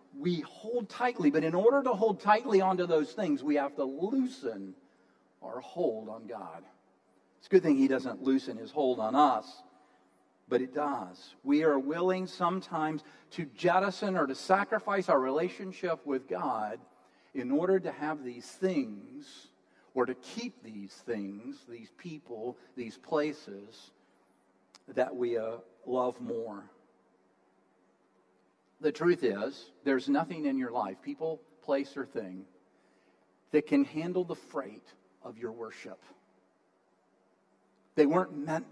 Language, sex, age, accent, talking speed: English, male, 50-69, American, 140 wpm